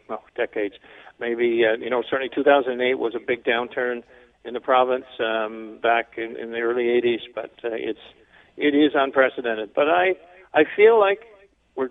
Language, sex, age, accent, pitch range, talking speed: English, male, 50-69, American, 120-145 Hz, 165 wpm